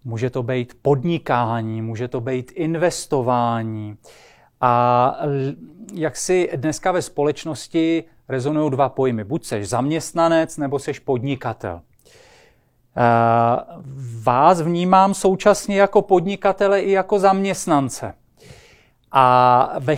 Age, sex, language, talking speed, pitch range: 40-59, male, Czech, 100 wpm, 135-180 Hz